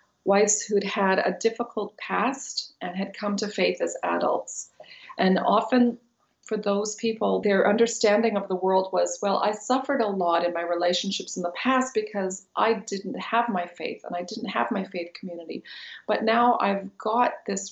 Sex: female